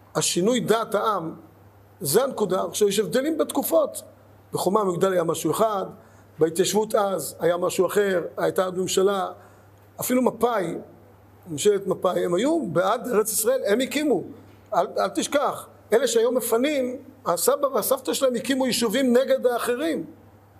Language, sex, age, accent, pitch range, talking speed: Hebrew, male, 50-69, native, 175-250 Hz, 135 wpm